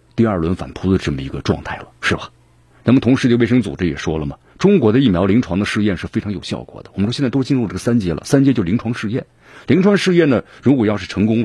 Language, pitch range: Chinese, 90-115 Hz